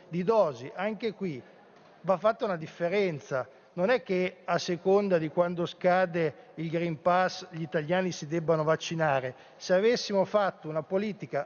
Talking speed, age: 150 wpm, 50-69